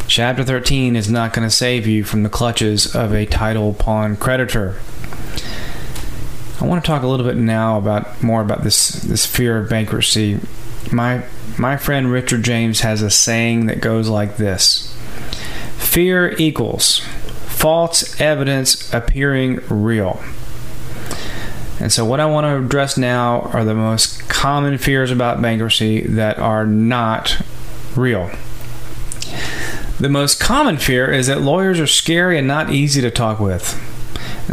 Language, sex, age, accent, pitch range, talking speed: English, male, 30-49, American, 110-130 Hz, 150 wpm